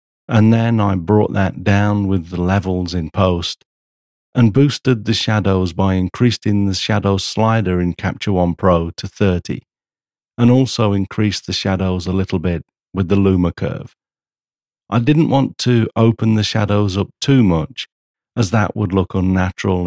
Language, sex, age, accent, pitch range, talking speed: English, male, 50-69, British, 90-110 Hz, 160 wpm